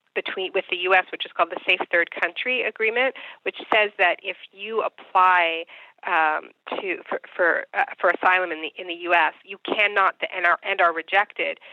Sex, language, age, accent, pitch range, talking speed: female, English, 40-59, American, 170-220 Hz, 190 wpm